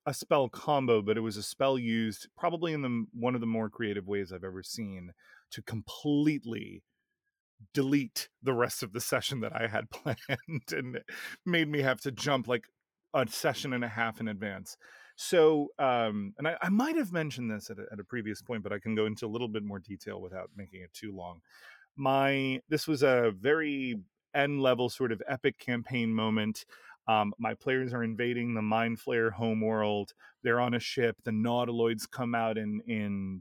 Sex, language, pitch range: male, English, 110-130 Hz